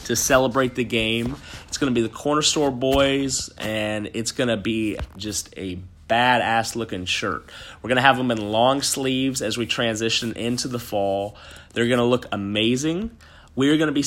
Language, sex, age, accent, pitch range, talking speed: English, male, 30-49, American, 100-125 Hz, 190 wpm